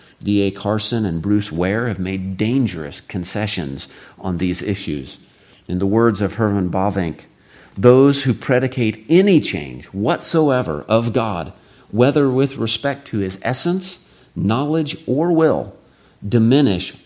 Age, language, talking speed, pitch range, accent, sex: 50-69, English, 125 wpm, 95-120 Hz, American, male